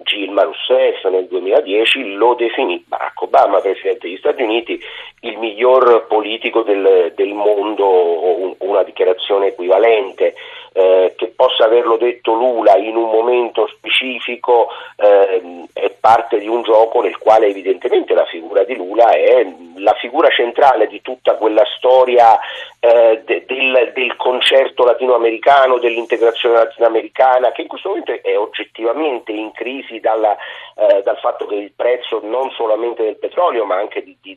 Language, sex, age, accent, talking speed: Italian, male, 40-59, native, 145 wpm